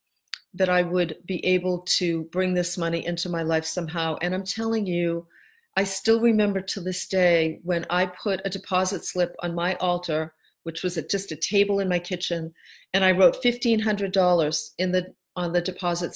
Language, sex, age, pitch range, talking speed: English, female, 40-59, 170-200 Hz, 175 wpm